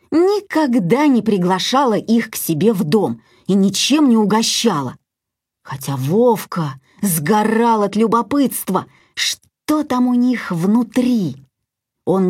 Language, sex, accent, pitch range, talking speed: Russian, female, native, 165-255 Hz, 110 wpm